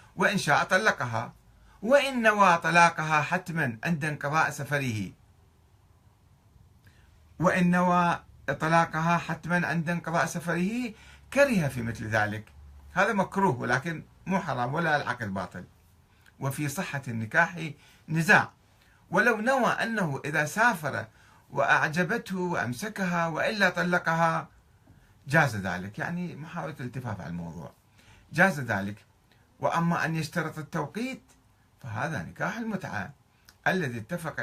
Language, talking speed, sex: Arabic, 105 wpm, male